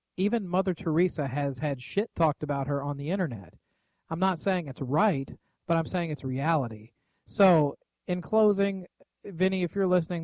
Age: 40-59